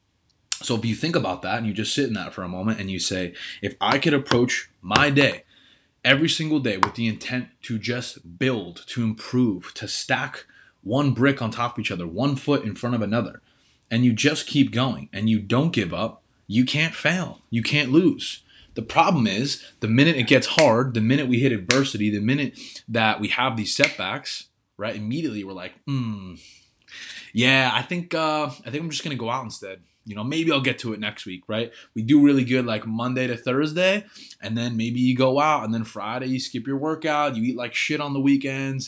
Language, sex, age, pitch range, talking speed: English, male, 20-39, 105-135 Hz, 220 wpm